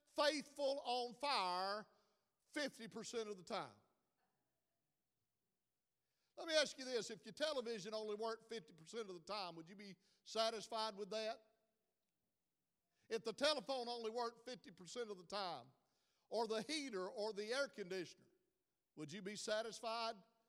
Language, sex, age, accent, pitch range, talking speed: English, male, 50-69, American, 210-260 Hz, 140 wpm